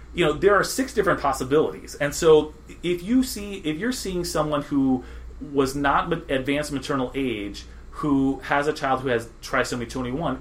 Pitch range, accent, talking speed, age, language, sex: 115-150 Hz, American, 175 wpm, 30-49, English, male